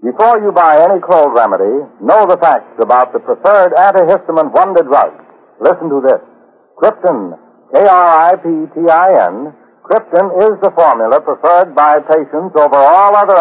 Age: 60-79